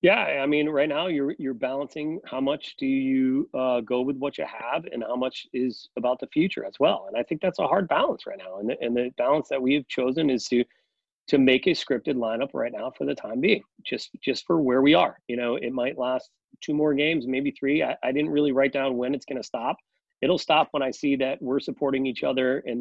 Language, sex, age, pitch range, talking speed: English, male, 30-49, 130-150 Hz, 255 wpm